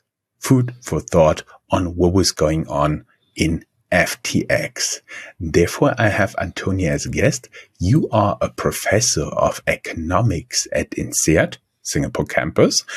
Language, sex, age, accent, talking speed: English, male, 50-69, German, 125 wpm